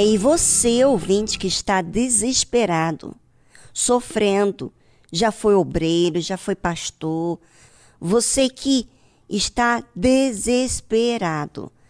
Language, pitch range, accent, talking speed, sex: Portuguese, 190-245 Hz, Brazilian, 85 wpm, male